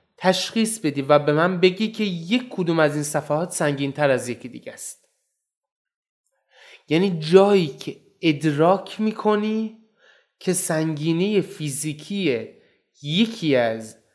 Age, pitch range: 20-39, 140-200 Hz